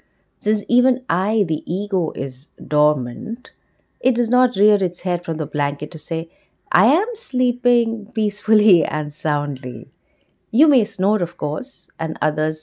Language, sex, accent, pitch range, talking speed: English, female, Indian, 145-215 Hz, 145 wpm